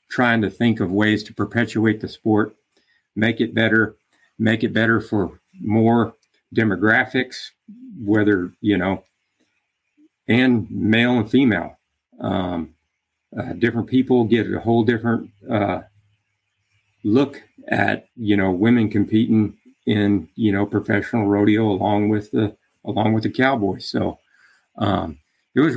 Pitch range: 95-110 Hz